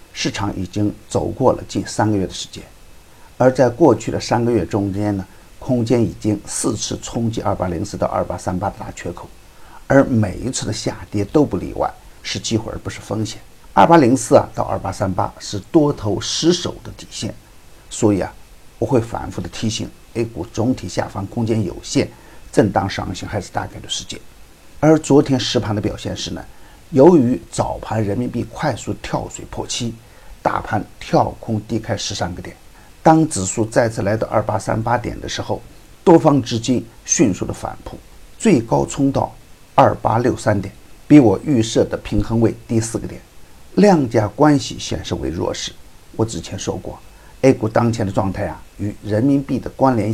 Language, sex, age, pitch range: Chinese, male, 50-69, 100-125 Hz